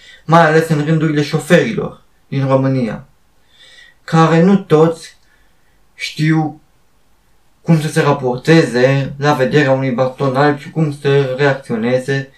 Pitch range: 140-165 Hz